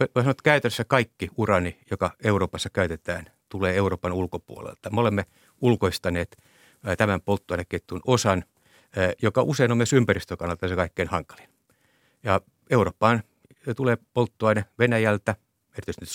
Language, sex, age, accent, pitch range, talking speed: Finnish, male, 60-79, native, 90-115 Hz, 110 wpm